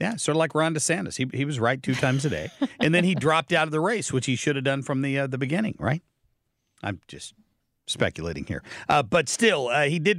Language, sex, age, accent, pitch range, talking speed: English, male, 50-69, American, 115-155 Hz, 255 wpm